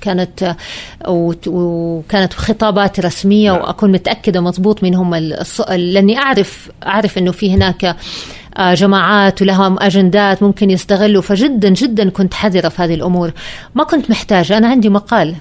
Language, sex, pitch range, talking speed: Arabic, female, 180-220 Hz, 130 wpm